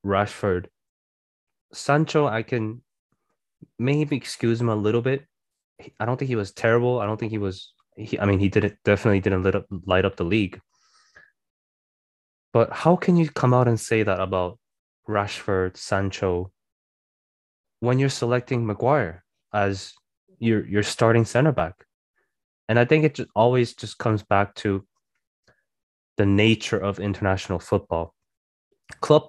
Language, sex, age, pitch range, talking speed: English, male, 20-39, 100-125 Hz, 150 wpm